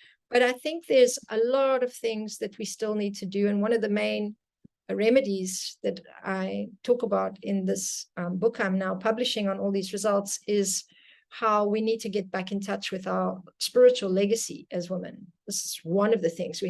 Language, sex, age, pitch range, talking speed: English, female, 40-59, 185-220 Hz, 205 wpm